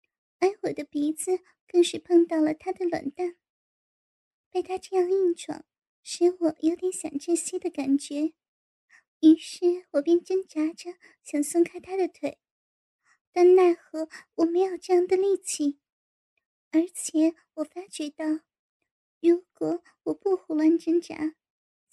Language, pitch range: Chinese, 315-360 Hz